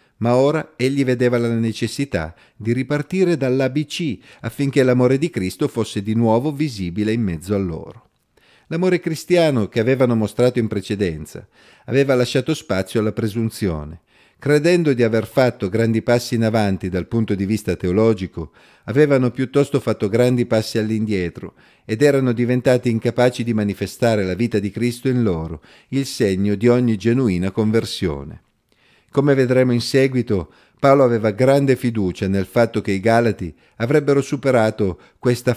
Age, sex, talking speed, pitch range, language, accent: 50-69, male, 145 wpm, 105-130 Hz, Italian, native